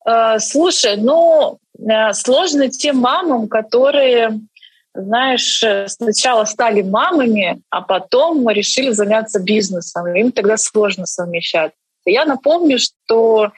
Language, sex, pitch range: Russian, female, 200-240 Hz